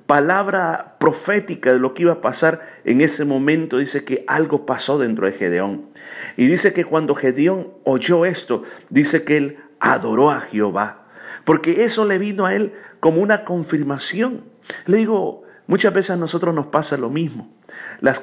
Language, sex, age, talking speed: Spanish, male, 50-69, 170 wpm